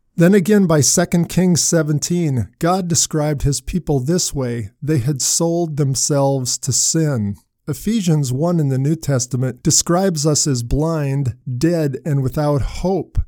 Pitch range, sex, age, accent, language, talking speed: 130-170 Hz, male, 50-69, American, English, 145 wpm